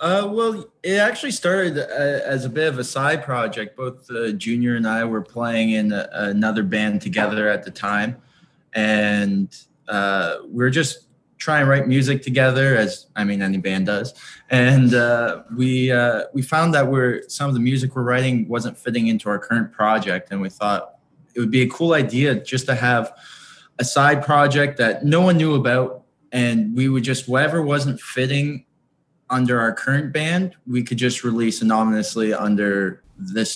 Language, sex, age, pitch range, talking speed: English, male, 20-39, 105-130 Hz, 180 wpm